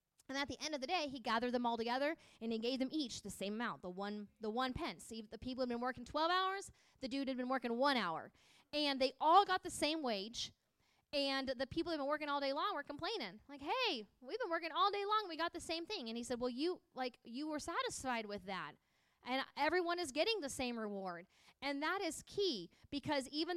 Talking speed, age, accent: 245 wpm, 20-39, American